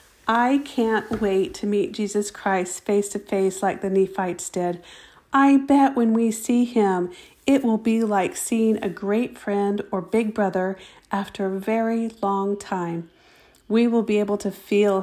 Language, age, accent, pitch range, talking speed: English, 40-59, American, 195-230 Hz, 170 wpm